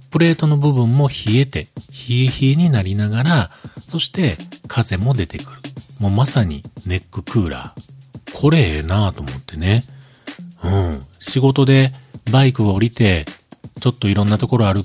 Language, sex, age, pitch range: Japanese, male, 40-59, 95-135 Hz